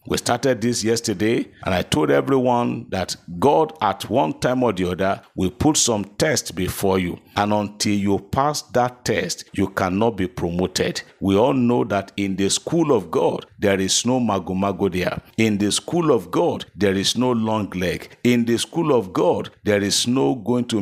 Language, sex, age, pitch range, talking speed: English, male, 50-69, 95-120 Hz, 185 wpm